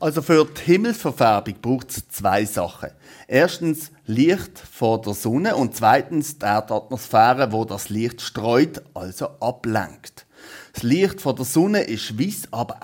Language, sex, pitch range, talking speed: German, male, 110-150 Hz, 145 wpm